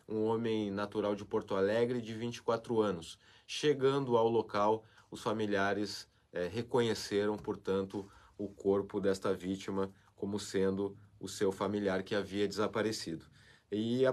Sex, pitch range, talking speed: male, 95-115 Hz, 130 wpm